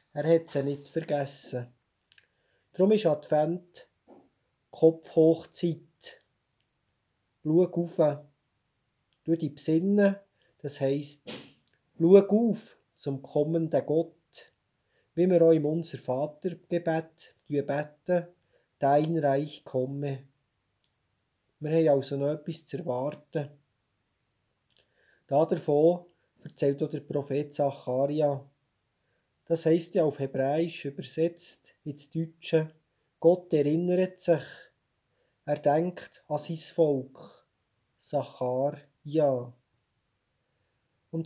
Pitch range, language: 135-165 Hz, German